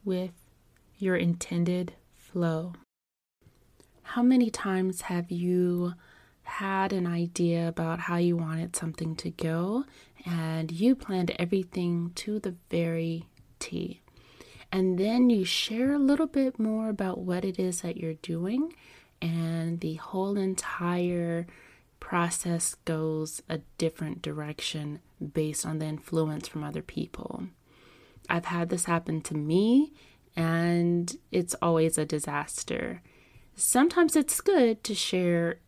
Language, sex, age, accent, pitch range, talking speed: English, female, 20-39, American, 165-200 Hz, 125 wpm